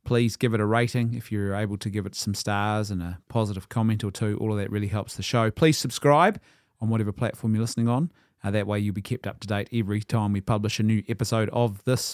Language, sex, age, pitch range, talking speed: English, male, 30-49, 105-140 Hz, 255 wpm